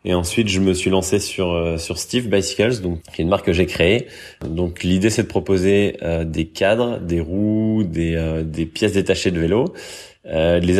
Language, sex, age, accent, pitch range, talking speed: French, male, 20-39, French, 85-95 Hz, 205 wpm